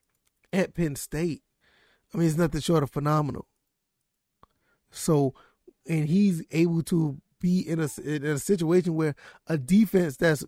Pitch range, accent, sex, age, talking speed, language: 135-165 Hz, American, male, 20-39, 145 wpm, English